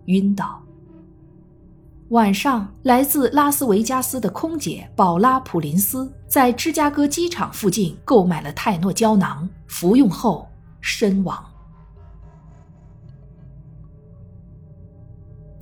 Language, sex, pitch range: Chinese, female, 175-245 Hz